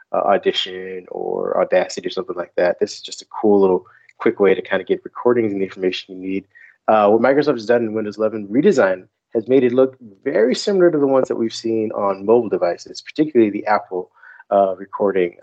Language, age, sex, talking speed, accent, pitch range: English, 30-49, male, 215 wpm, American, 95-125 Hz